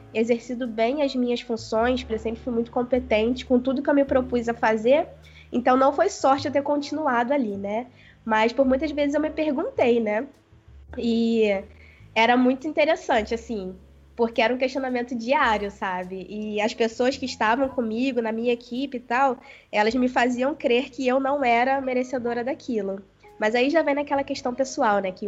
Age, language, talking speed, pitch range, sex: 20-39, Portuguese, 185 wpm, 225-270 Hz, female